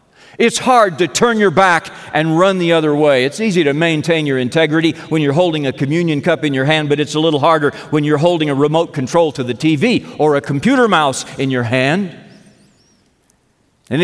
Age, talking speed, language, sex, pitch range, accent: 50-69, 205 wpm, English, male, 150-195 Hz, American